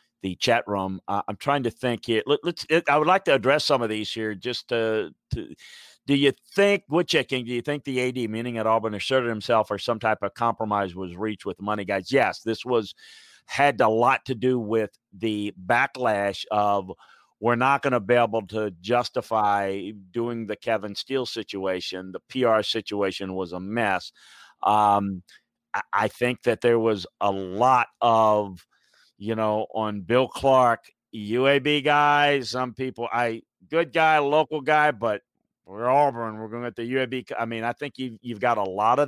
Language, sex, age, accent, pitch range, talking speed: English, male, 50-69, American, 105-130 Hz, 185 wpm